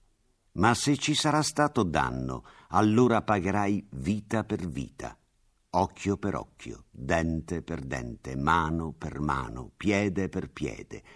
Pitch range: 85-110 Hz